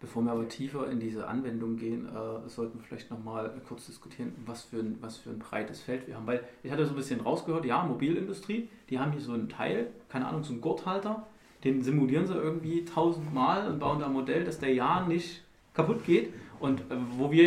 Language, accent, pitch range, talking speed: German, German, 115-145 Hz, 215 wpm